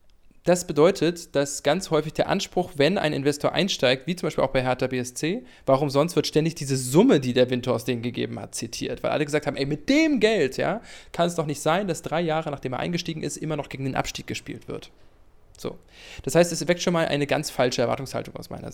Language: English